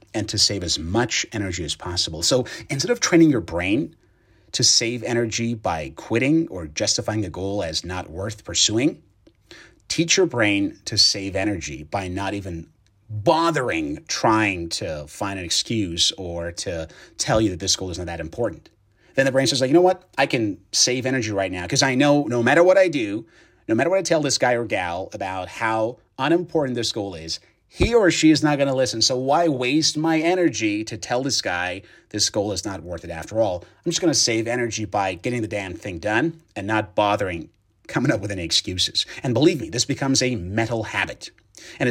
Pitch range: 100-135 Hz